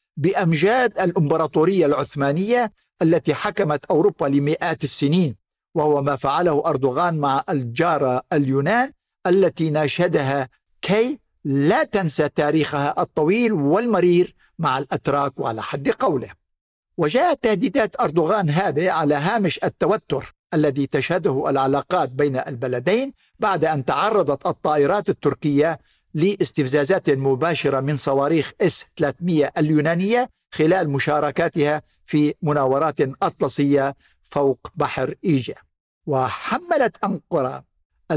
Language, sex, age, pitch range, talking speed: Arabic, male, 60-79, 145-185 Hz, 95 wpm